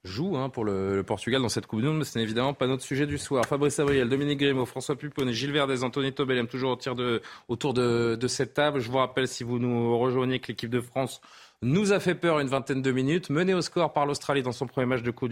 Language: French